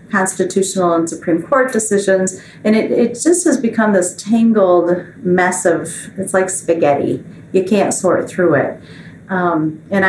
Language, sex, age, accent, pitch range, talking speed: English, female, 40-59, American, 175-205 Hz, 150 wpm